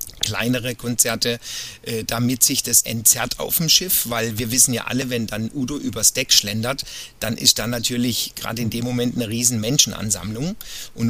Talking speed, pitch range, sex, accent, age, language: 175 wpm, 115-155 Hz, male, German, 40-59, German